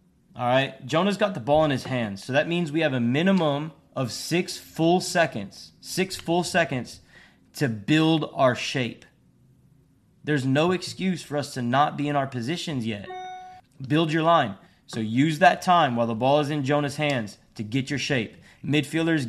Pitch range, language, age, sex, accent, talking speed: 120-150 Hz, English, 20-39, male, American, 180 wpm